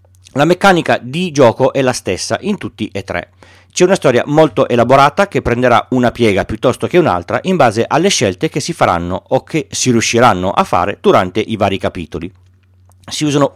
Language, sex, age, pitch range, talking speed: Italian, male, 40-59, 100-155 Hz, 185 wpm